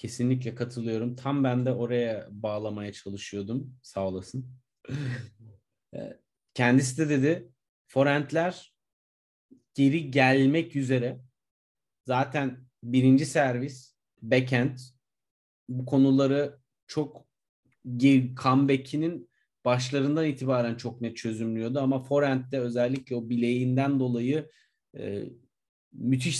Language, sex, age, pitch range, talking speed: Turkish, male, 40-59, 115-135 Hz, 85 wpm